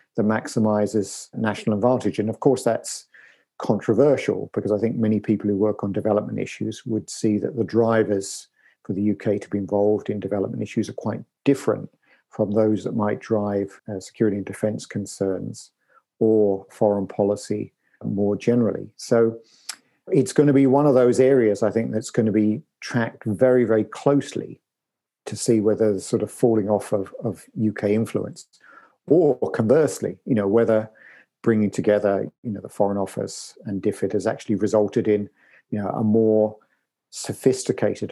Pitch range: 100-115 Hz